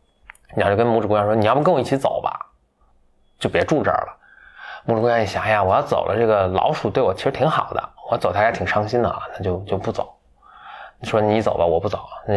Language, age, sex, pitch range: Chinese, 20-39, male, 95-120 Hz